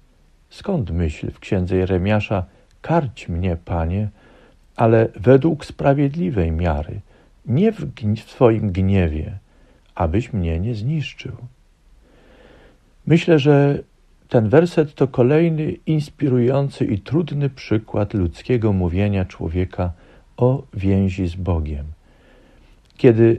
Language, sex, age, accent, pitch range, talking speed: Polish, male, 50-69, native, 95-135 Hz, 105 wpm